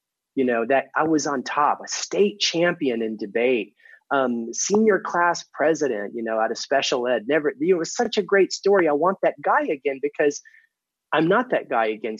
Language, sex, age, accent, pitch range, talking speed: English, male, 30-49, American, 110-170 Hz, 195 wpm